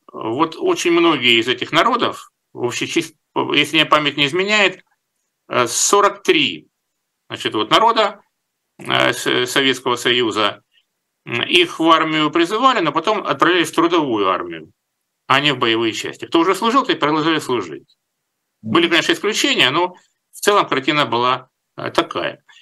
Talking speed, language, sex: 135 wpm, Russian, male